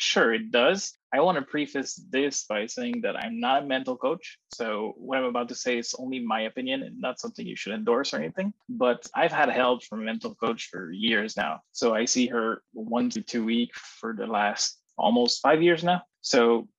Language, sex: English, male